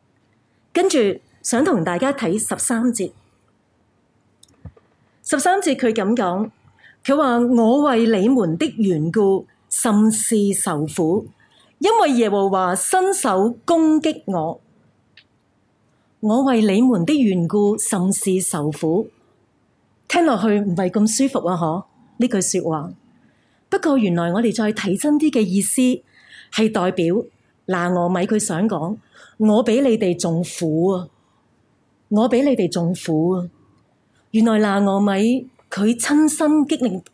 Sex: female